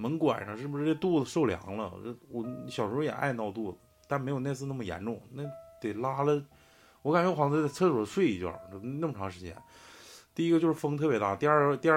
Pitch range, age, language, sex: 110-155 Hz, 20-39, Chinese, male